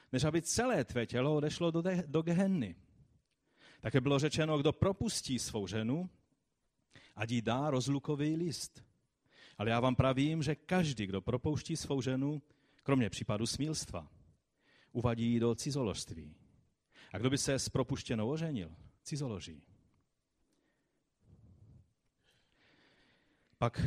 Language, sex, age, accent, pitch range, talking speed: Czech, male, 40-59, native, 105-135 Hz, 120 wpm